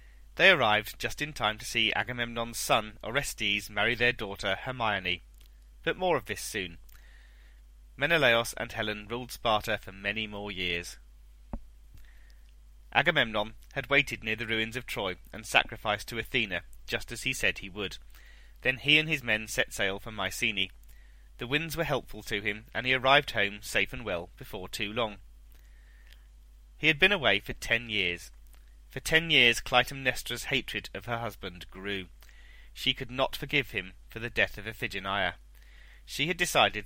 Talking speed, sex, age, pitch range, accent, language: 165 wpm, male, 30-49, 85-125 Hz, British, English